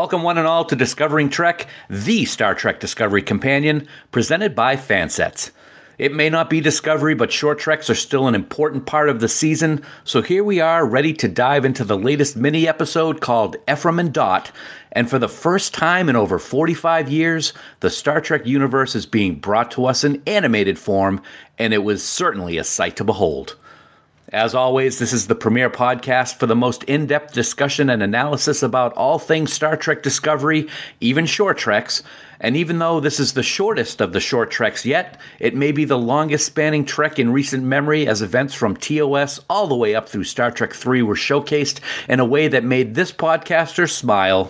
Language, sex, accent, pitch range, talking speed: English, male, American, 125-160 Hz, 190 wpm